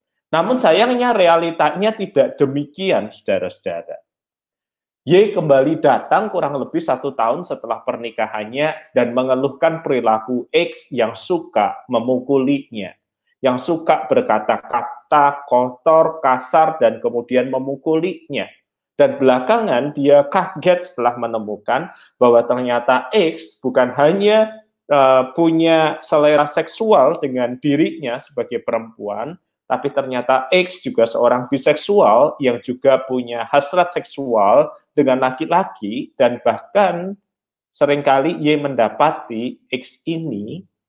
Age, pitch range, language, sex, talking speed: 20-39, 125-165 Hz, Malay, male, 100 wpm